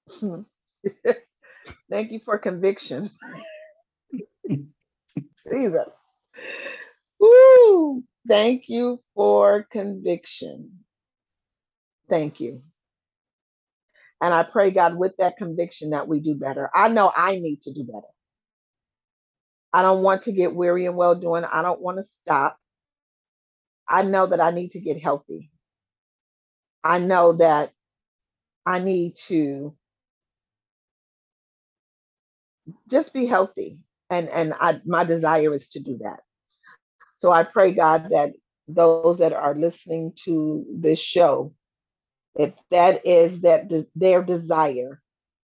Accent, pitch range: American, 160-195 Hz